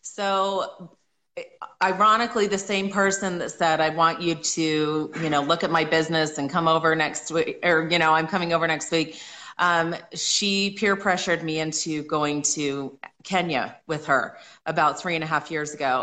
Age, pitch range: 30-49, 150-180 Hz